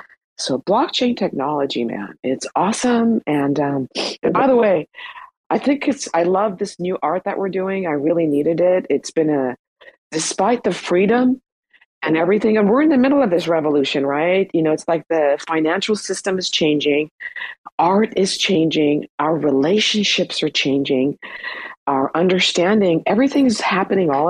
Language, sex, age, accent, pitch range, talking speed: English, female, 50-69, American, 155-215 Hz, 160 wpm